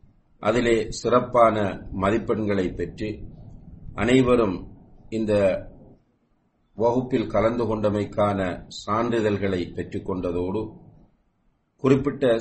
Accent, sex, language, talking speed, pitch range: Indian, male, English, 55 wpm, 95-120 Hz